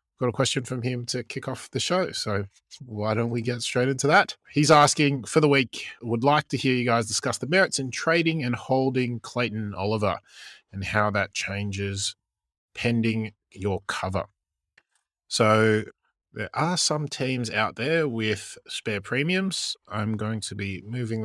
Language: English